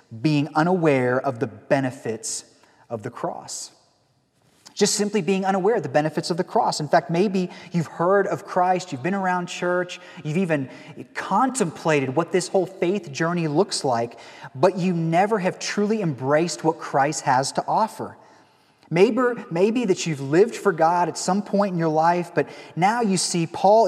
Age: 30-49